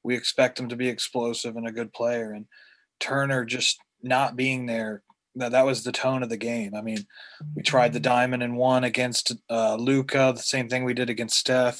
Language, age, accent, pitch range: English, 30-49, American, 125-135 Hz